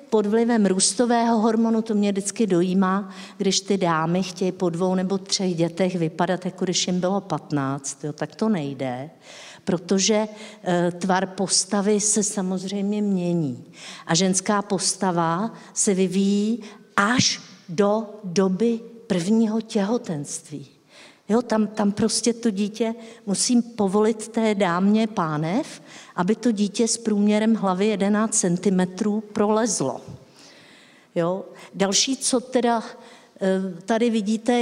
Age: 50-69